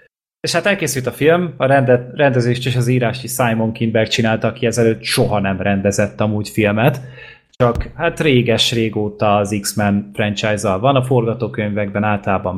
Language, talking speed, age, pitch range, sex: Hungarian, 150 wpm, 20-39, 110-130 Hz, male